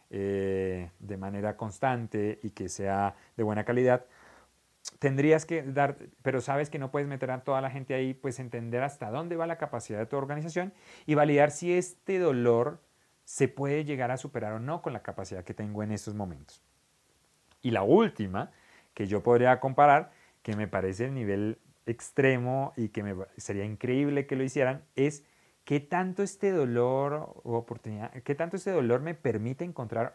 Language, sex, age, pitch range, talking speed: Spanish, male, 30-49, 110-150 Hz, 175 wpm